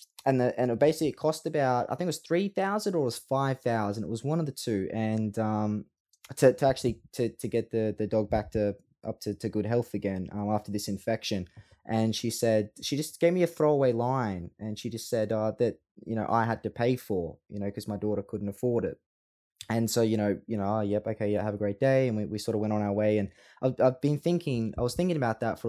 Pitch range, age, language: 105-130 Hz, 20-39, English